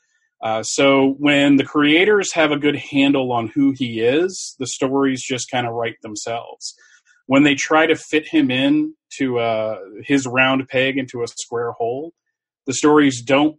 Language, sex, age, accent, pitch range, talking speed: English, male, 30-49, American, 120-155 Hz, 170 wpm